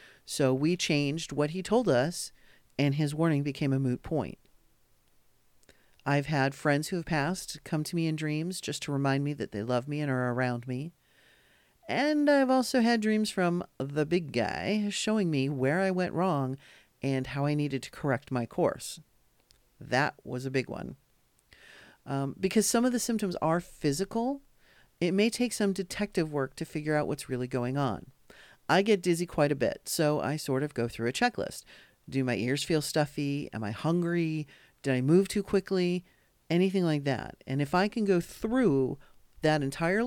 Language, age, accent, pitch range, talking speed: English, 50-69, American, 135-185 Hz, 185 wpm